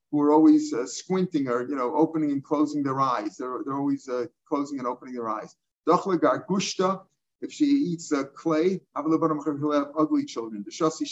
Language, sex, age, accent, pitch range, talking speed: English, male, 50-69, American, 145-170 Hz, 185 wpm